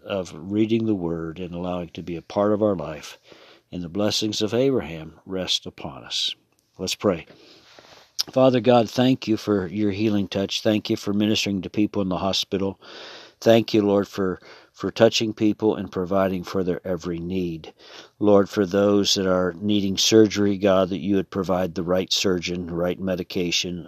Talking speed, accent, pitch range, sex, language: 175 wpm, American, 90-105 Hz, male, English